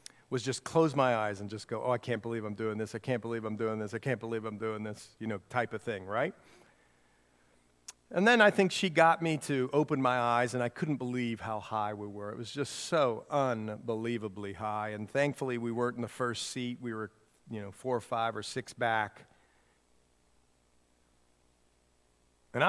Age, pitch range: 40-59, 95-135 Hz